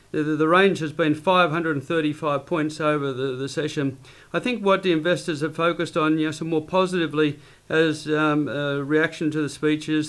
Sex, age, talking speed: male, 40-59, 170 wpm